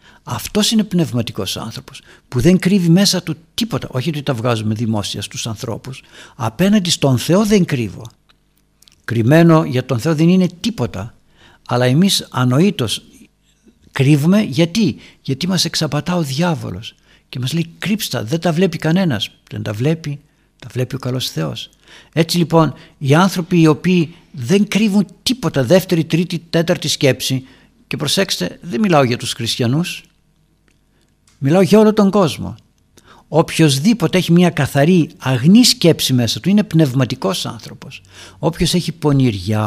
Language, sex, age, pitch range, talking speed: Greek, male, 60-79, 120-170 Hz, 140 wpm